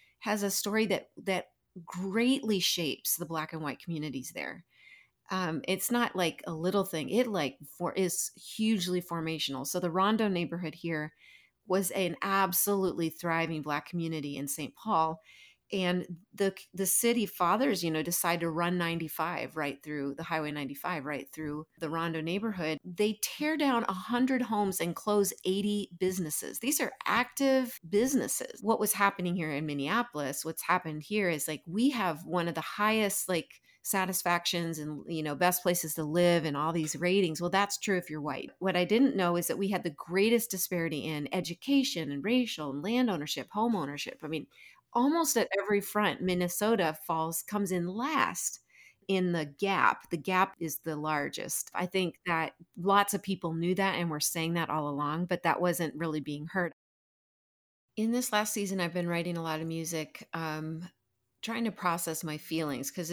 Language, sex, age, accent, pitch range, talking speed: English, female, 30-49, American, 160-200 Hz, 180 wpm